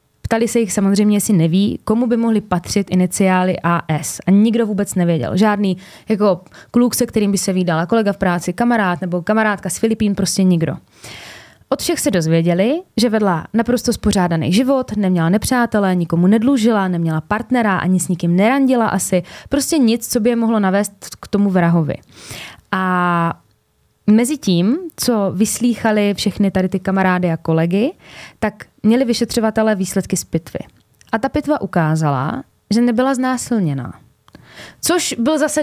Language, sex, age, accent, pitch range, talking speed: Czech, female, 20-39, native, 180-235 Hz, 155 wpm